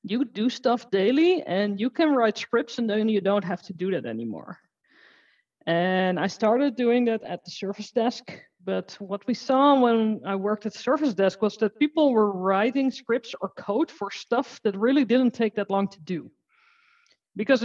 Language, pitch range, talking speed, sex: English, 200-255 Hz, 190 wpm, female